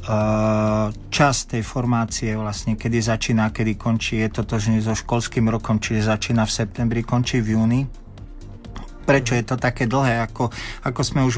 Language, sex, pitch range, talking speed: Slovak, male, 105-125 Hz, 165 wpm